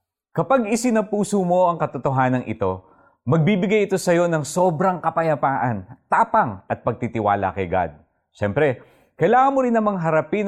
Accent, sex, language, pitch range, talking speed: native, male, Filipino, 105-170 Hz, 135 wpm